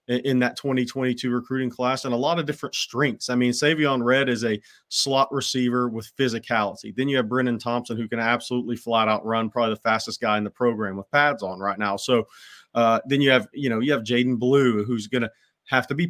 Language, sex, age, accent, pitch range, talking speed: English, male, 30-49, American, 120-145 Hz, 225 wpm